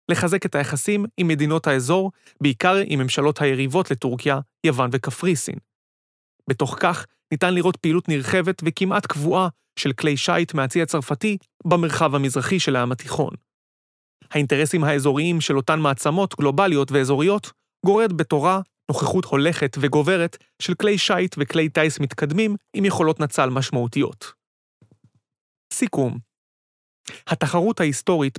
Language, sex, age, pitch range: Hebrew, male, 30-49, 140-180 Hz